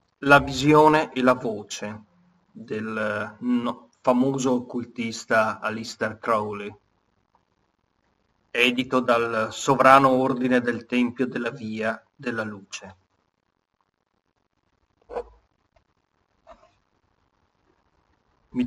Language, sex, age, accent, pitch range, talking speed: Italian, male, 40-59, native, 110-135 Hz, 70 wpm